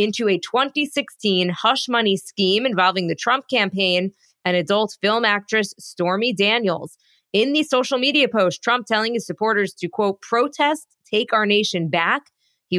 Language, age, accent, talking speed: English, 20-39, American, 155 wpm